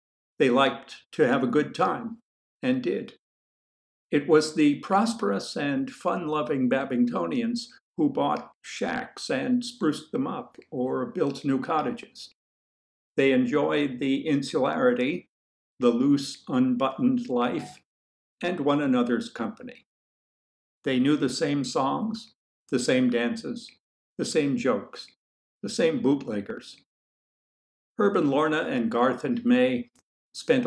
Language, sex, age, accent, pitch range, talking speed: English, male, 60-79, American, 150-250 Hz, 115 wpm